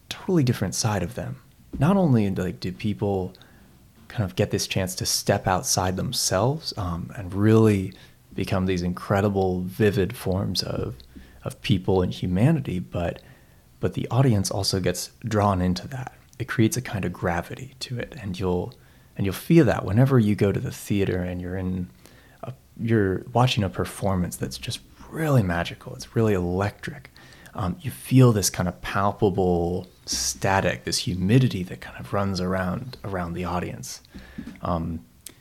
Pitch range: 90-115 Hz